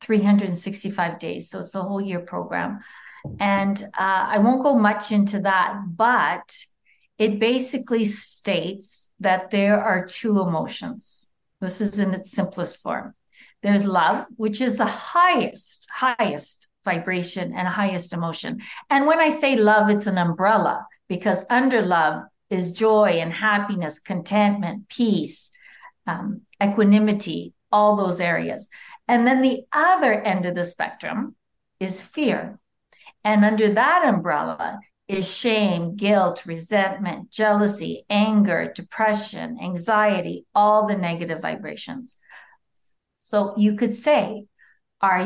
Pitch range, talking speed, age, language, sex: 185-220 Hz, 125 wpm, 50-69, English, female